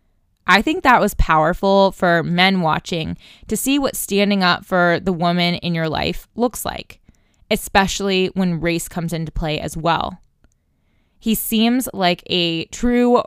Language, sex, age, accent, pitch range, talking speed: English, female, 20-39, American, 175-225 Hz, 155 wpm